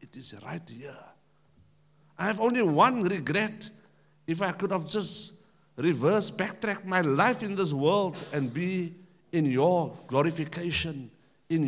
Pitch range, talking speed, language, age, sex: 155-220 Hz, 140 wpm, English, 50-69, male